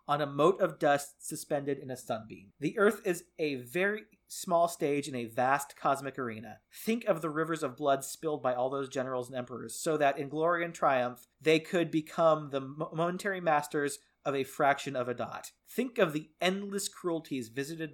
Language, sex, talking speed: English, male, 195 wpm